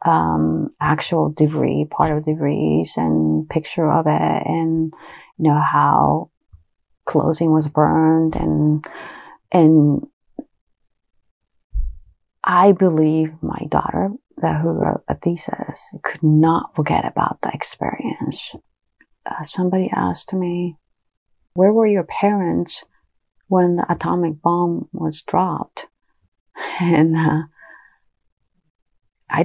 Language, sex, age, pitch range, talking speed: English, female, 30-49, 145-180 Hz, 105 wpm